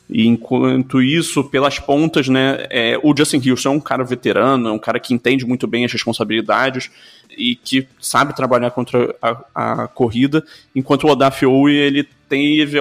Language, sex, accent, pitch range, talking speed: Portuguese, male, Brazilian, 120-135 Hz, 170 wpm